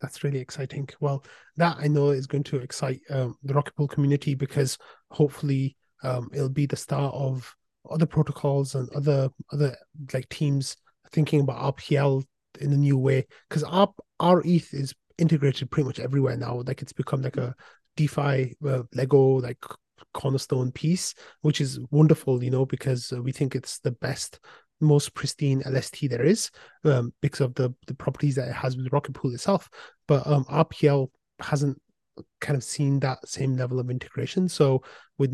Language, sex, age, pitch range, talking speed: English, male, 30-49, 130-145 Hz, 175 wpm